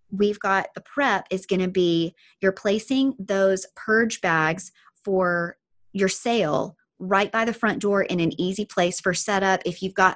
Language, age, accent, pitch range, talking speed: English, 30-49, American, 175-205 Hz, 175 wpm